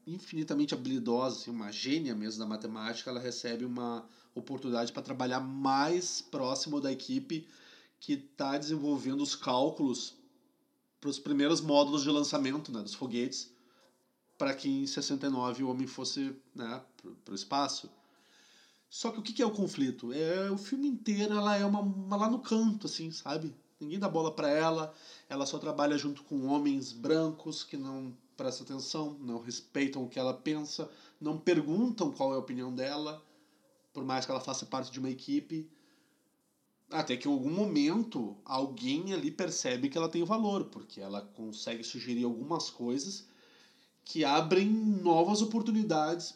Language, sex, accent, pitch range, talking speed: Portuguese, male, Brazilian, 130-215 Hz, 160 wpm